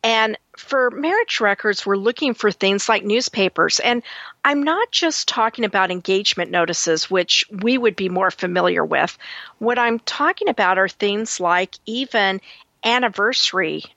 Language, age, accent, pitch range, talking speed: English, 50-69, American, 190-230 Hz, 145 wpm